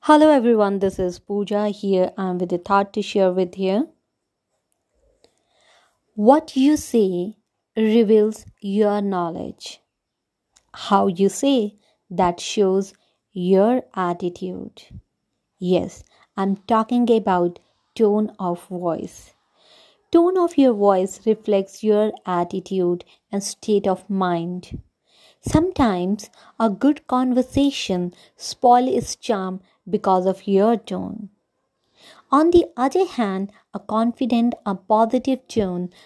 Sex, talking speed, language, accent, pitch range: female, 110 wpm, English, Indian, 190-235 Hz